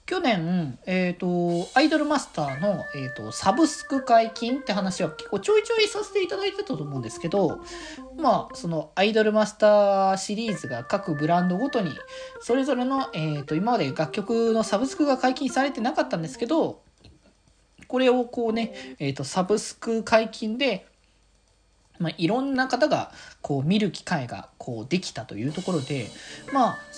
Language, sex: Japanese, male